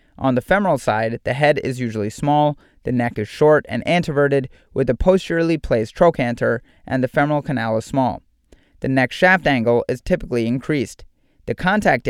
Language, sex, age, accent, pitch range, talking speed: English, male, 30-49, American, 120-150 Hz, 175 wpm